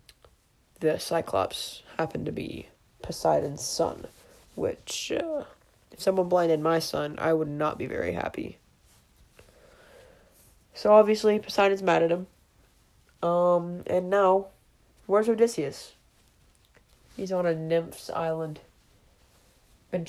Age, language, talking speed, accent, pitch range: 20-39, English, 110 wpm, American, 155-185 Hz